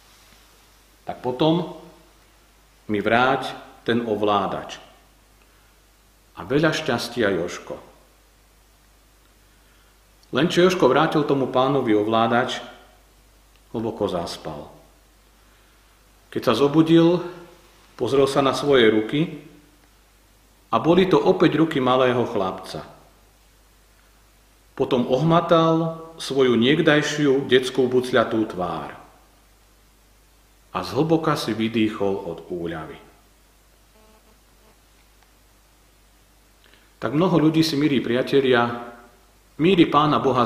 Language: Slovak